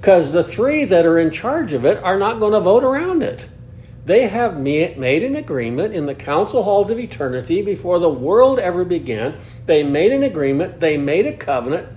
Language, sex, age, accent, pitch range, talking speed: English, male, 60-79, American, 135-220 Hz, 200 wpm